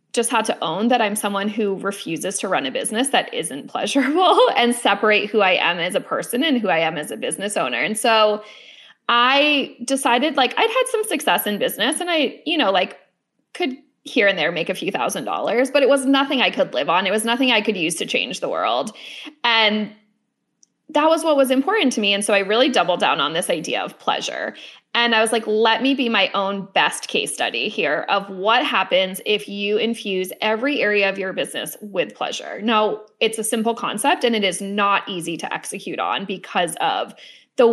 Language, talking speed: English, 215 wpm